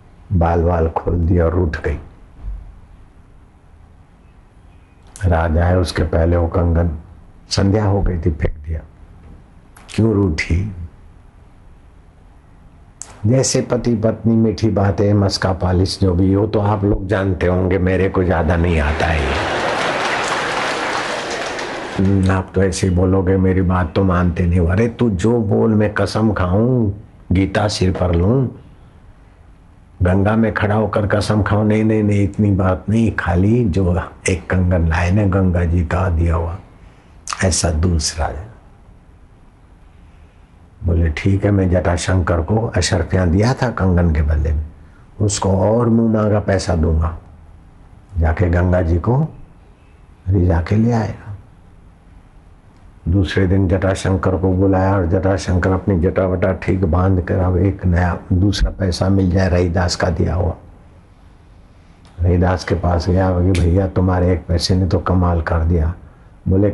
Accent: native